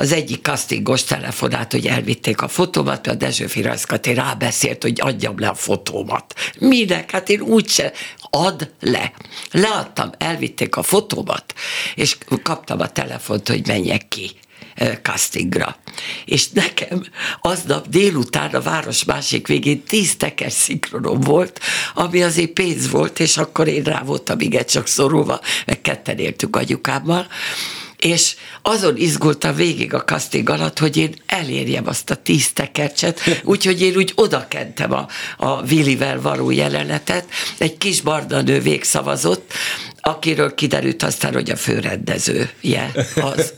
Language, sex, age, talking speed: Hungarian, female, 60-79, 130 wpm